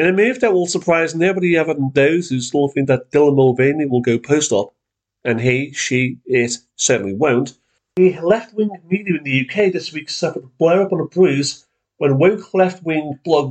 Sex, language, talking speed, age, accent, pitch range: male, English, 190 wpm, 40-59, British, 125-180 Hz